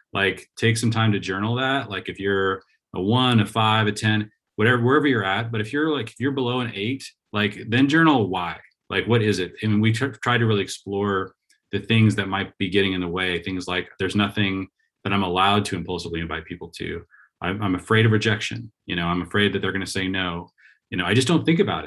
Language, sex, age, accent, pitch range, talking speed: English, male, 30-49, American, 95-115 Hz, 235 wpm